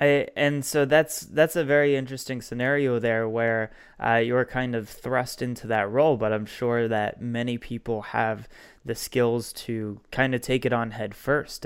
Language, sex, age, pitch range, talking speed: English, male, 20-39, 115-130 Hz, 185 wpm